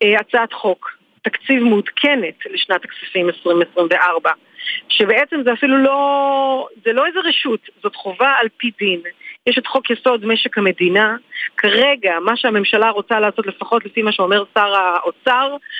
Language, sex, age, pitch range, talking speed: Hebrew, female, 40-59, 210-300 Hz, 140 wpm